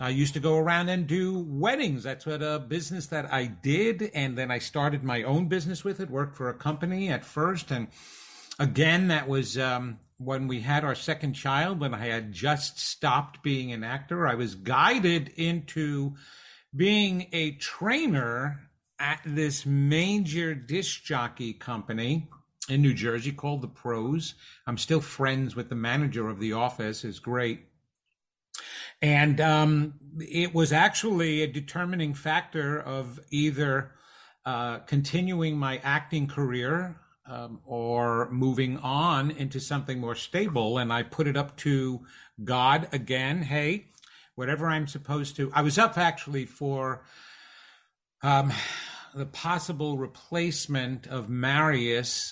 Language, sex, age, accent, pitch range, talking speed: English, male, 50-69, American, 130-155 Hz, 145 wpm